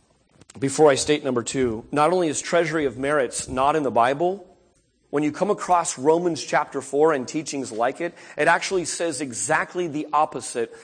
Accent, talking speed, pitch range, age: American, 175 wpm, 150-230 Hz, 40-59